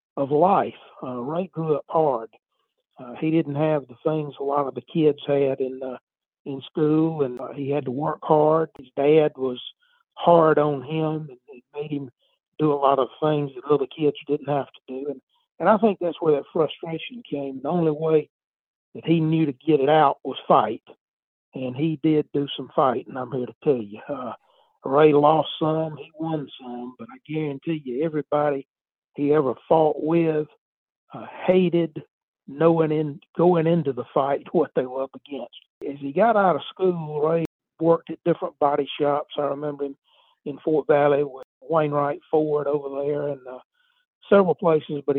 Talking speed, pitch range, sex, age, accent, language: 190 wpm, 140-160 Hz, male, 60-79, American, English